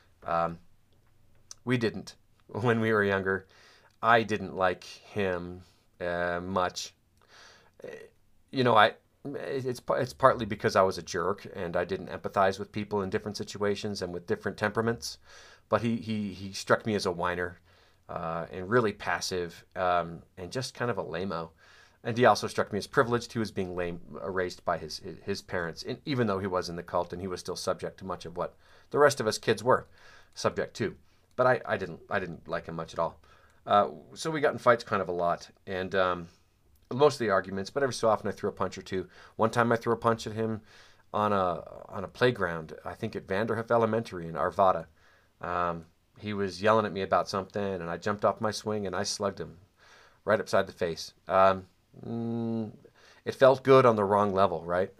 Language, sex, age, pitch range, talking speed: English, male, 30-49, 90-115 Hz, 205 wpm